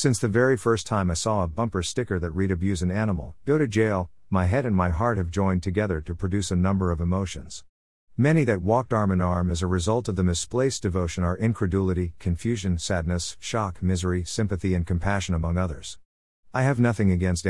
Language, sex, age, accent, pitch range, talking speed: English, male, 50-69, American, 90-115 Hz, 205 wpm